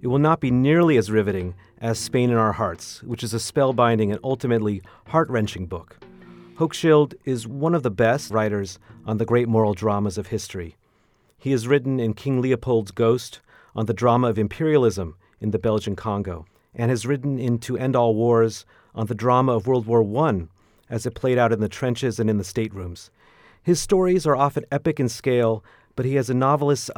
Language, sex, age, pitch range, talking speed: English, male, 40-59, 110-130 Hz, 195 wpm